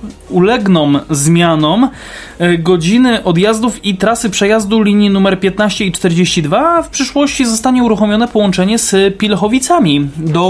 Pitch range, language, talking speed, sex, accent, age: 180-235 Hz, Polish, 120 wpm, male, native, 20-39